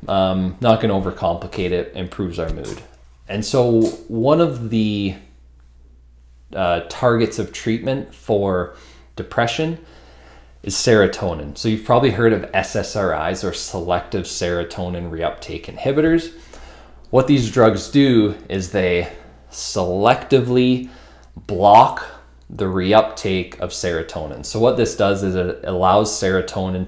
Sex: male